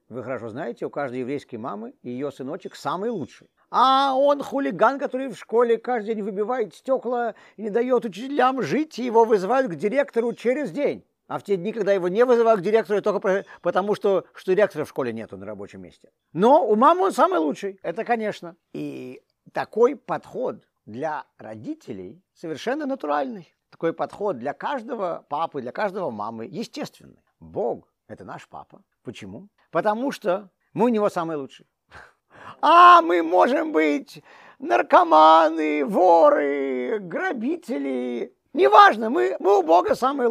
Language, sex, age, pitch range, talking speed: Russian, male, 50-69, 155-245 Hz, 155 wpm